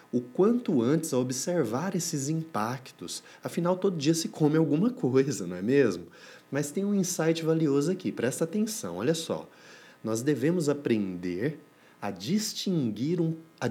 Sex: male